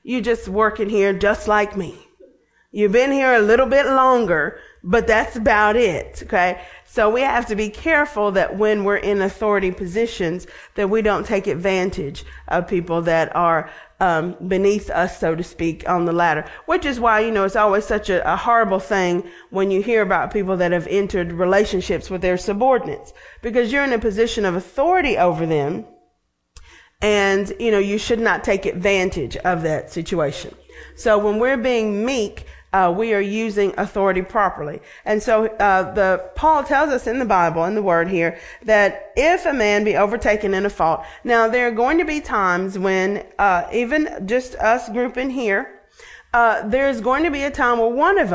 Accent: American